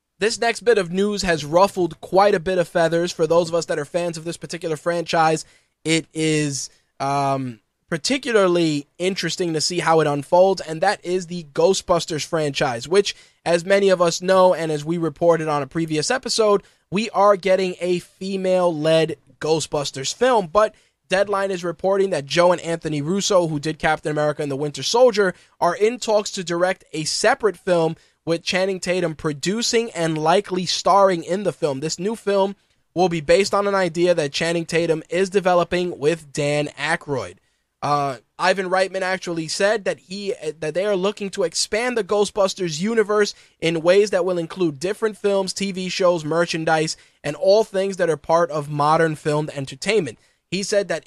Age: 20-39